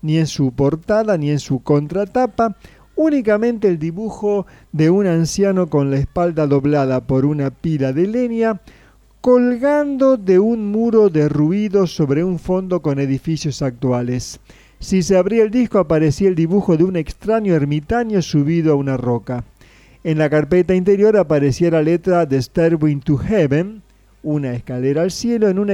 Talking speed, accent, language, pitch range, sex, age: 155 wpm, Argentinian, Spanish, 145-210 Hz, male, 40-59